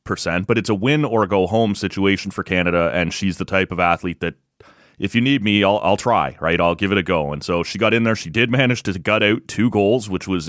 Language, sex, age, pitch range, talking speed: English, male, 30-49, 95-115 Hz, 270 wpm